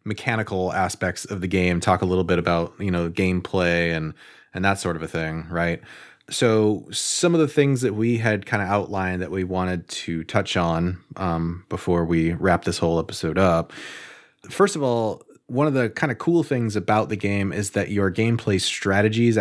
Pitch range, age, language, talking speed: 90-115 Hz, 30-49, English, 200 wpm